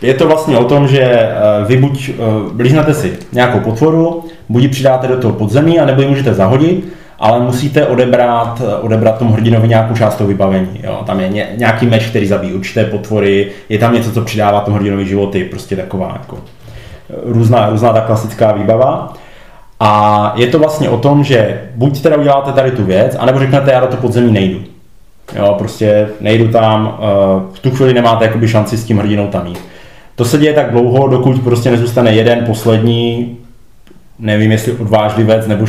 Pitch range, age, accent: 105-130 Hz, 20-39, native